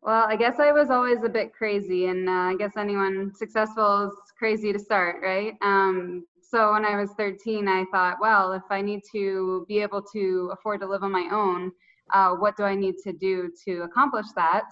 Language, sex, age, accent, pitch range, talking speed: English, female, 20-39, American, 185-205 Hz, 210 wpm